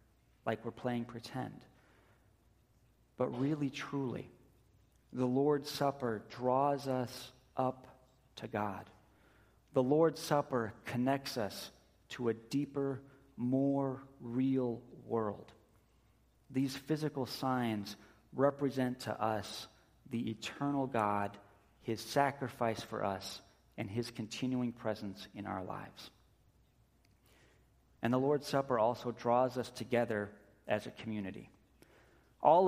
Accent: American